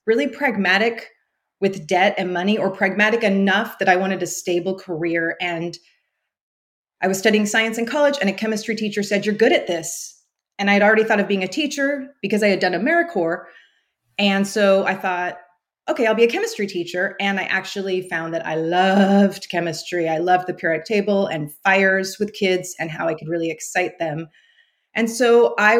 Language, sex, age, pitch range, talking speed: English, female, 30-49, 180-230 Hz, 190 wpm